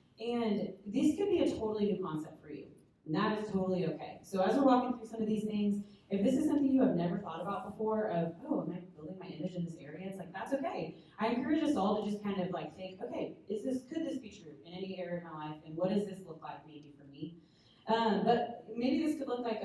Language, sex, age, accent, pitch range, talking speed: English, female, 30-49, American, 165-220 Hz, 265 wpm